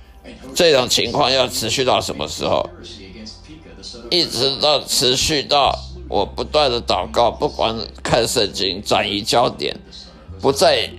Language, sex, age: Chinese, male, 50-69